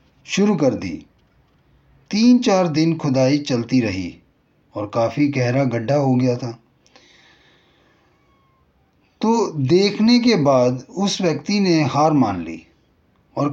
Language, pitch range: Hindi, 120-170 Hz